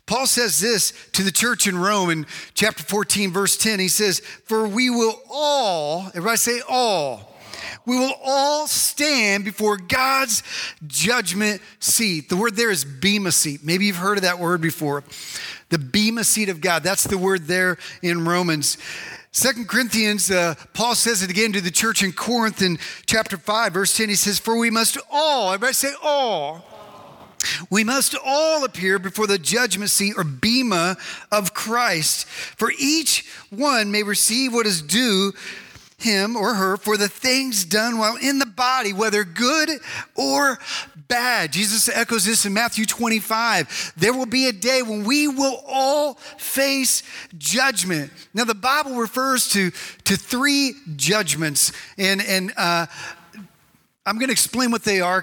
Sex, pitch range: male, 185-240 Hz